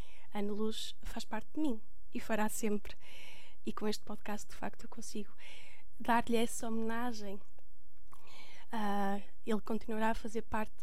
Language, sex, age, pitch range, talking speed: Portuguese, female, 20-39, 220-245 Hz, 145 wpm